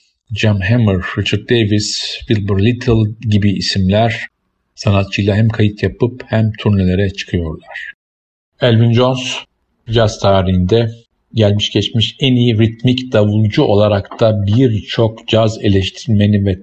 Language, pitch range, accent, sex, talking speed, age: Turkish, 95-110 Hz, native, male, 110 wpm, 50-69